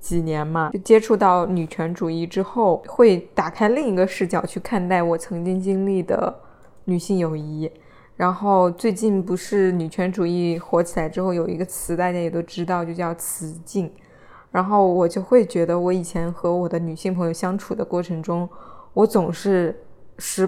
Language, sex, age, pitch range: Chinese, female, 20-39, 170-195 Hz